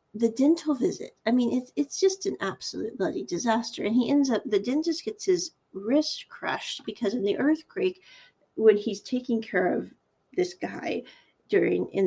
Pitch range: 205-305 Hz